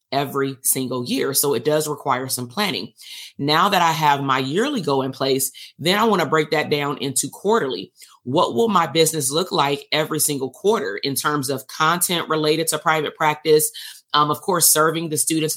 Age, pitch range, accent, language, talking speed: 30-49, 140-170 Hz, American, English, 195 wpm